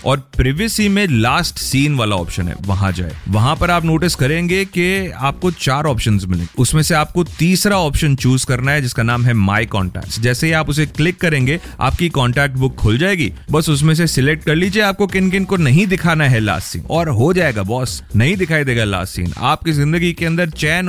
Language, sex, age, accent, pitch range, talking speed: Hindi, male, 30-49, native, 115-165 Hz, 210 wpm